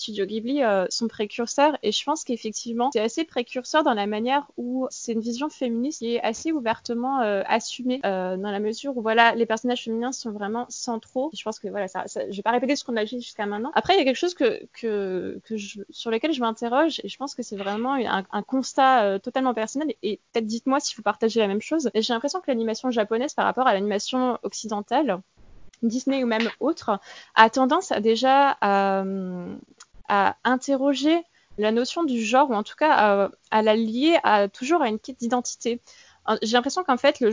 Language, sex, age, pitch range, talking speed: French, female, 20-39, 215-270 Hz, 220 wpm